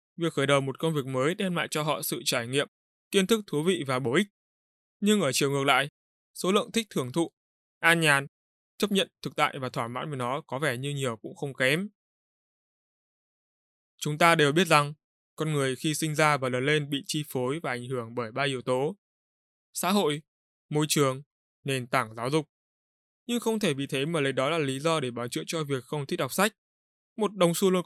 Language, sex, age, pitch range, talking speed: Vietnamese, male, 20-39, 135-175 Hz, 225 wpm